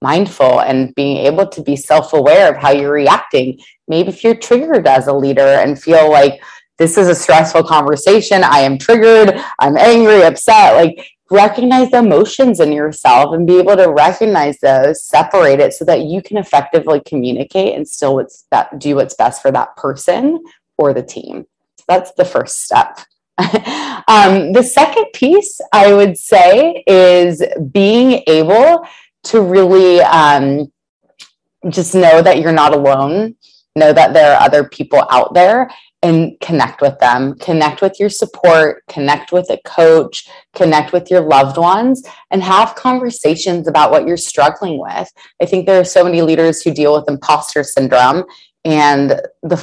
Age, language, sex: 20-39, English, female